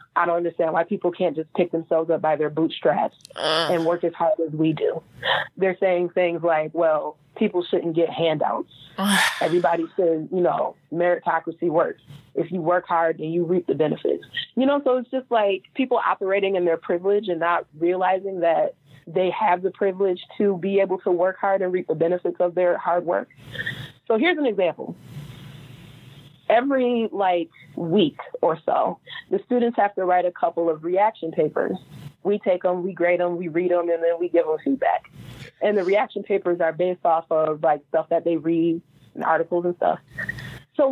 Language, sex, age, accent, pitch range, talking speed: English, female, 30-49, American, 165-195 Hz, 190 wpm